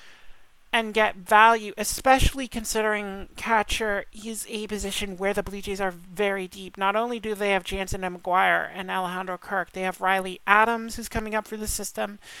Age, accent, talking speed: 40-59, American, 180 wpm